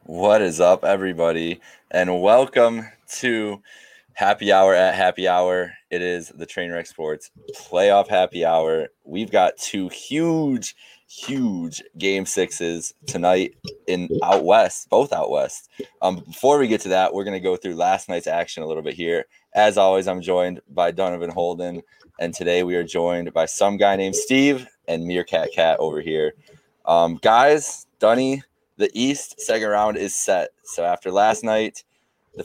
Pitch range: 85-125 Hz